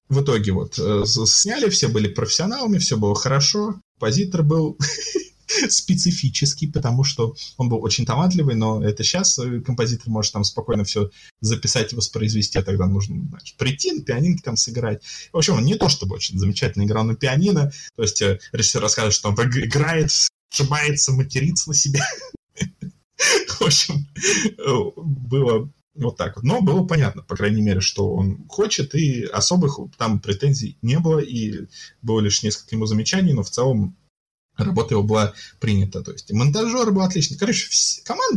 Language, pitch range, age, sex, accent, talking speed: Russian, 105-155 Hz, 20-39, male, native, 155 wpm